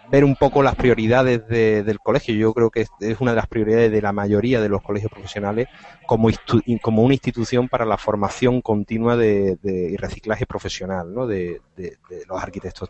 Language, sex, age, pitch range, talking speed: Spanish, male, 30-49, 100-120 Hz, 200 wpm